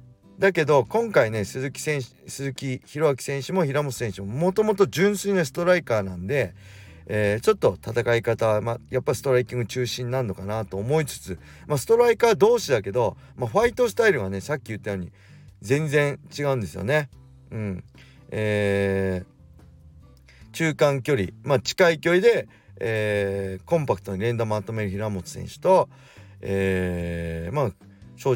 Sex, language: male, Japanese